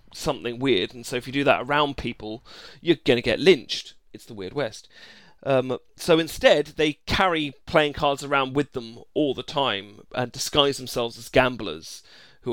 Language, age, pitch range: English, 30-49, 120-145 Hz